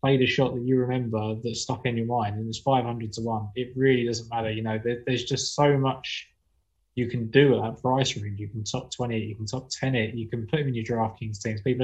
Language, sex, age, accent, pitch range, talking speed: English, male, 20-39, British, 110-135 Hz, 270 wpm